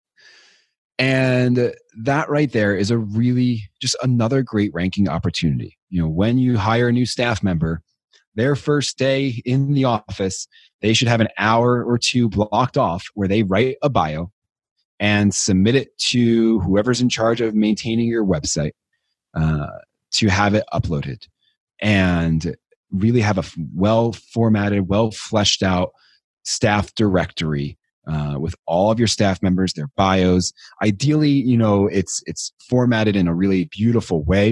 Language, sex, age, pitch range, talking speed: English, male, 30-49, 90-115 Hz, 150 wpm